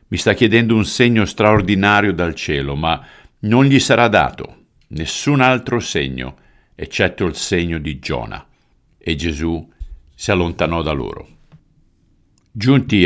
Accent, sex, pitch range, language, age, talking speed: native, male, 75-100 Hz, Italian, 50-69, 130 wpm